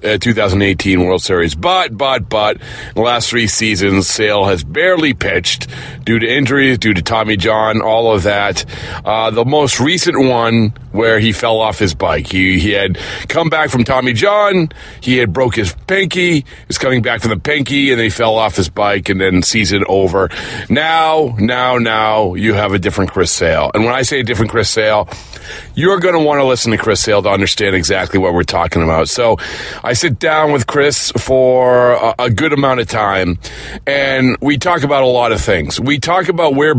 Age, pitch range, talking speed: 40-59, 110-140 Hz, 200 wpm